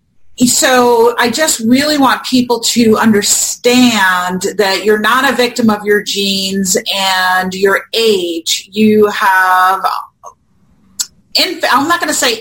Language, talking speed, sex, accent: English, 125 wpm, female, American